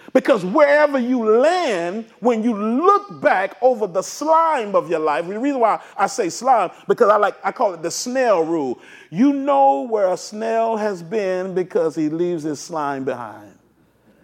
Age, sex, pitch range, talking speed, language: 40-59, male, 155-235 Hz, 175 wpm, English